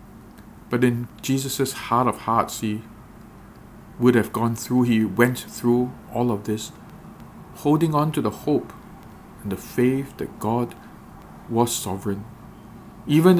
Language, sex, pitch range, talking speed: English, male, 110-125 Hz, 135 wpm